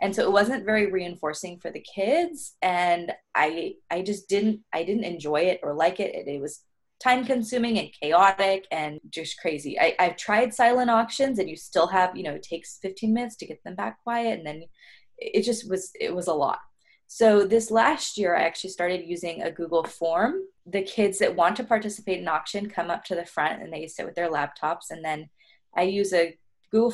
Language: English